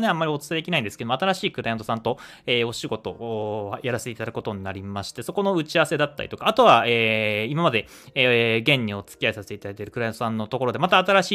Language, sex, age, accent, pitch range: Japanese, male, 20-39, native, 110-150 Hz